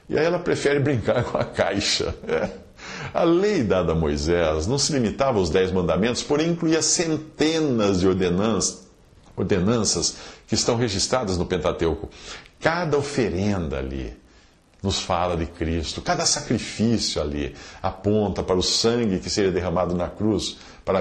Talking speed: 140 wpm